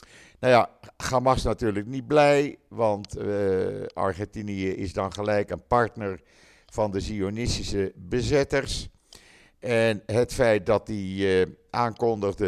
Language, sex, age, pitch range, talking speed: Dutch, male, 50-69, 90-115 Hz, 120 wpm